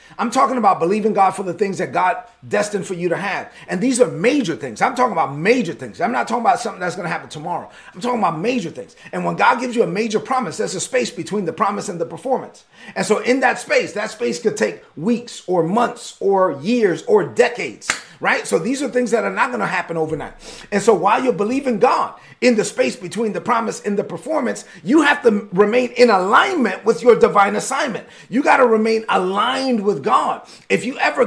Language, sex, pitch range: English, male, 200-250 Hz